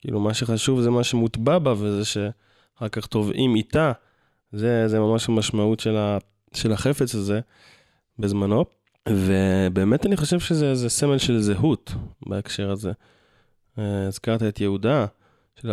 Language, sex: Hebrew, male